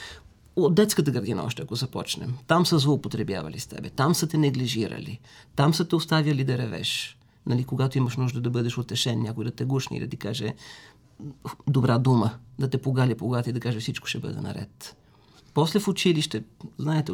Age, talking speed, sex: 40-59, 180 wpm, male